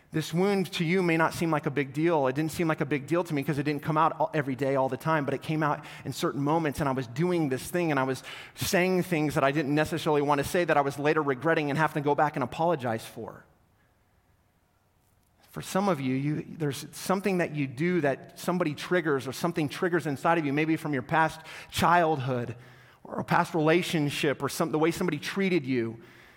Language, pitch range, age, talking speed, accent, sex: English, 140-175 Hz, 30-49, 230 wpm, American, male